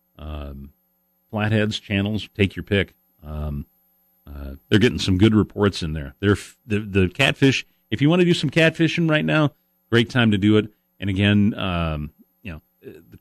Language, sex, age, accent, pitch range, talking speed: English, male, 40-59, American, 80-115 Hz, 180 wpm